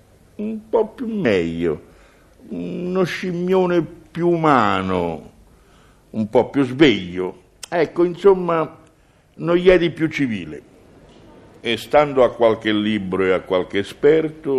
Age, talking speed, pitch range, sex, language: 60-79, 120 wpm, 115-160 Hz, male, Italian